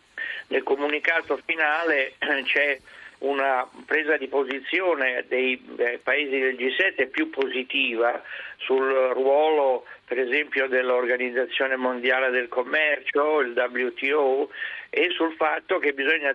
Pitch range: 130-160 Hz